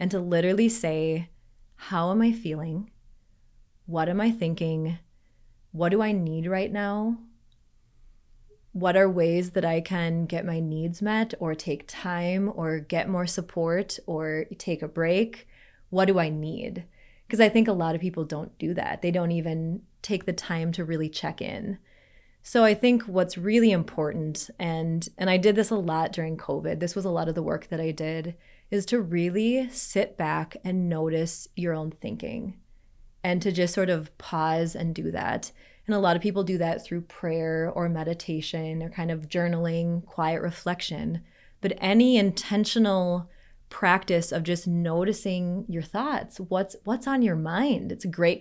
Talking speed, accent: 175 wpm, American